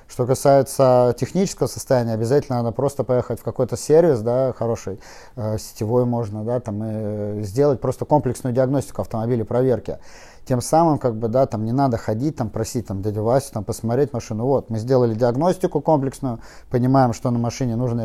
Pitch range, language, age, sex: 115-135 Hz, Russian, 30-49, male